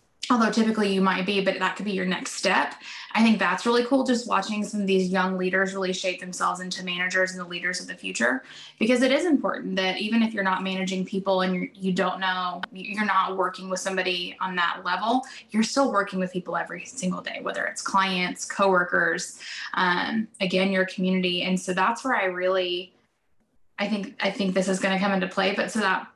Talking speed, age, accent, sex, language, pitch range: 215 wpm, 10-29, American, female, English, 185-220 Hz